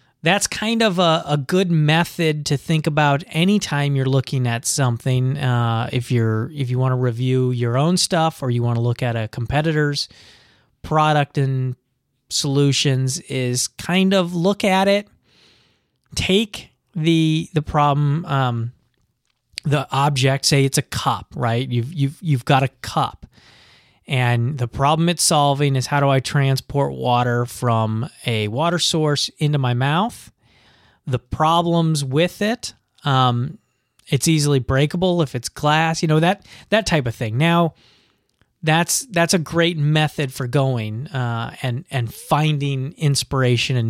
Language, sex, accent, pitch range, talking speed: English, male, American, 125-160 Hz, 150 wpm